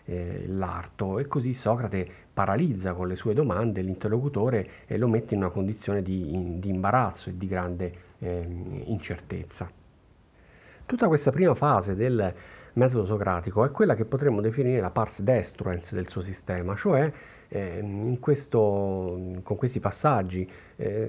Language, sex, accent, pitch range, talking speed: Italian, male, native, 95-125 Hz, 140 wpm